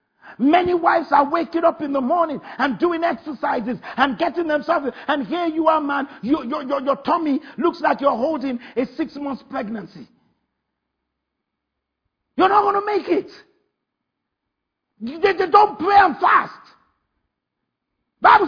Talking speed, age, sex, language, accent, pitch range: 140 wpm, 50-69, male, English, Nigerian, 285-390 Hz